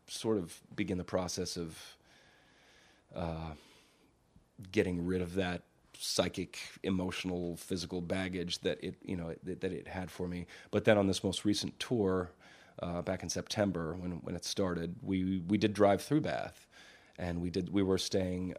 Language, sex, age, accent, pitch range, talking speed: English, male, 30-49, American, 85-95 Hz, 165 wpm